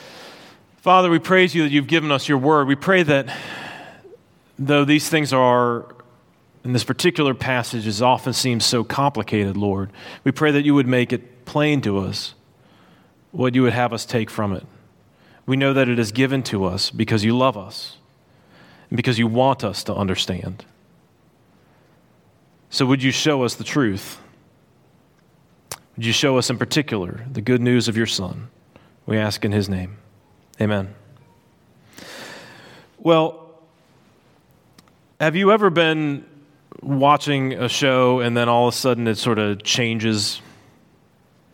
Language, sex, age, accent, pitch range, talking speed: English, male, 30-49, American, 110-140 Hz, 155 wpm